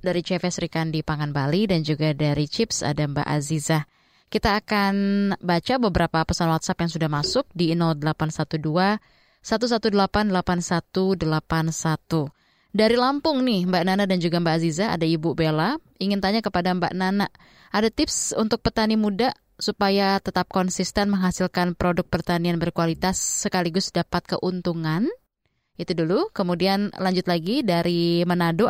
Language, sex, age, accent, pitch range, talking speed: Indonesian, female, 20-39, native, 170-205 Hz, 135 wpm